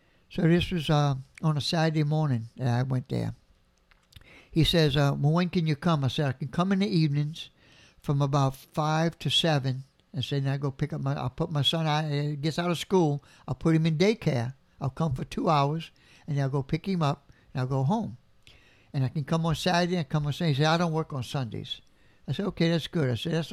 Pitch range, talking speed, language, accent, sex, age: 135-170 Hz, 245 wpm, English, American, male, 60-79